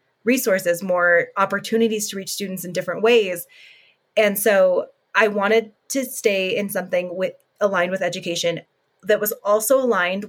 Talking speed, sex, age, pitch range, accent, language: 145 wpm, female, 20-39, 180-220 Hz, American, English